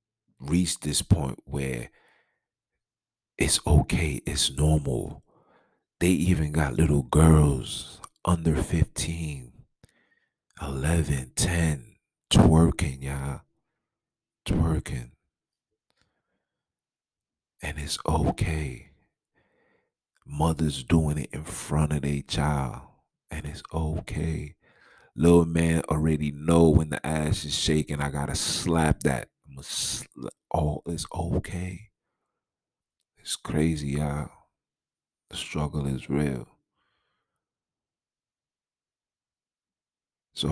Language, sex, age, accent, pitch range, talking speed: English, male, 40-59, American, 75-90 Hz, 85 wpm